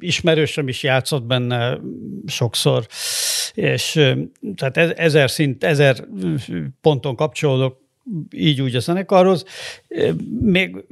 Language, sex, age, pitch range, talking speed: Hungarian, male, 60-79, 125-155 Hz, 95 wpm